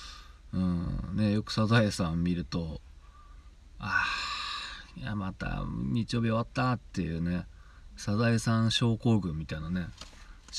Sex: male